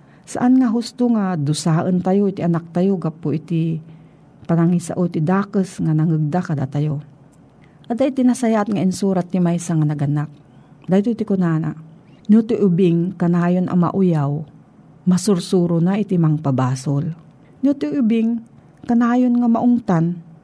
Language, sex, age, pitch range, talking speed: Filipino, female, 40-59, 155-215 Hz, 145 wpm